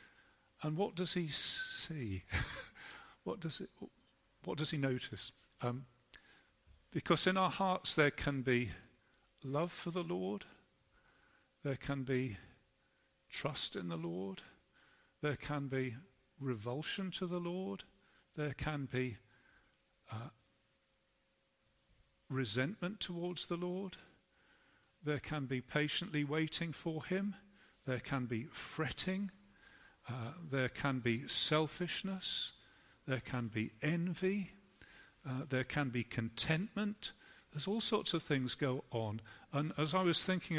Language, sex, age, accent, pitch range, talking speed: English, male, 50-69, British, 130-175 Hz, 120 wpm